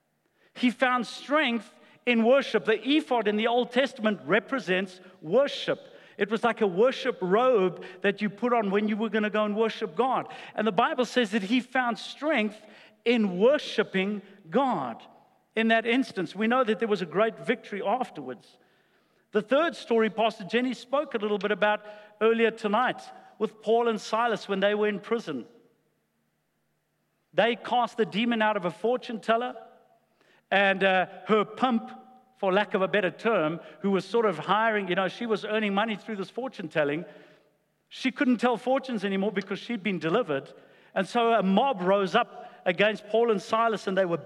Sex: male